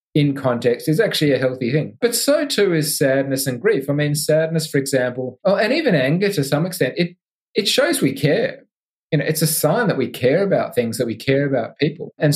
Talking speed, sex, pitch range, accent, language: 225 wpm, male, 125-155 Hz, Australian, English